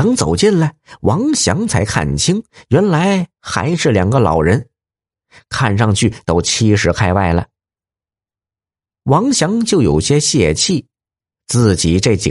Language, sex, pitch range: Chinese, male, 100-150 Hz